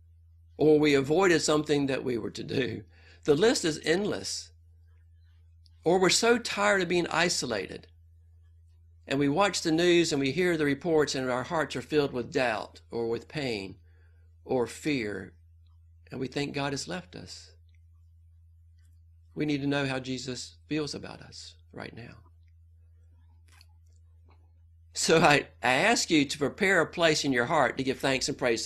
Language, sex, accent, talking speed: English, male, American, 160 wpm